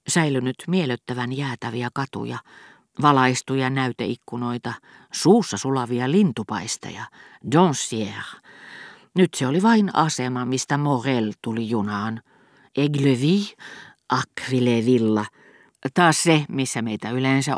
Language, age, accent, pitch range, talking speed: Finnish, 40-59, native, 115-140 Hz, 90 wpm